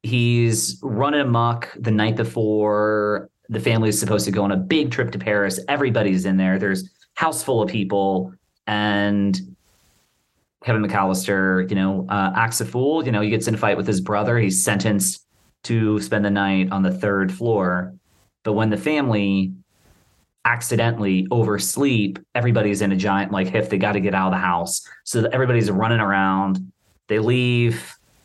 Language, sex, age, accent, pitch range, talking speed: English, male, 30-49, American, 95-115 Hz, 175 wpm